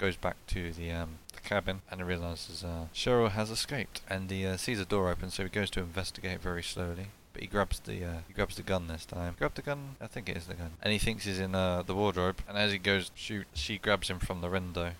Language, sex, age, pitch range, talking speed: English, male, 20-39, 90-105 Hz, 270 wpm